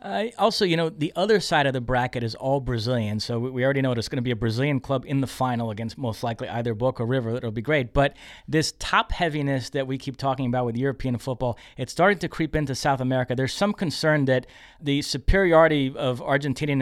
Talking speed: 225 wpm